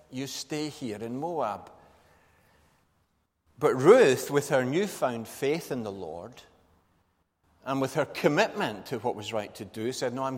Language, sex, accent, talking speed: English, male, British, 155 wpm